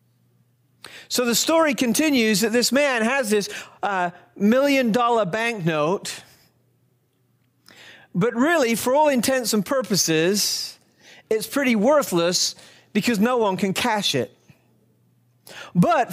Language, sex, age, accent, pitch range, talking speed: English, male, 40-59, American, 195-275 Hz, 110 wpm